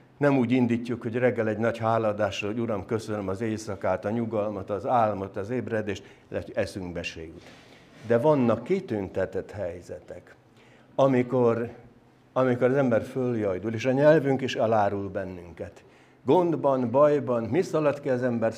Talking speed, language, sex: 135 wpm, Hungarian, male